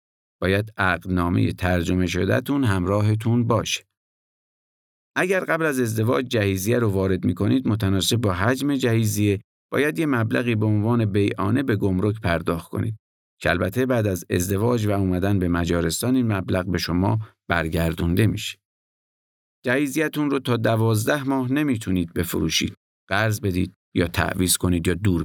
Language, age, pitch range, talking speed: Persian, 50-69, 85-120 Hz, 135 wpm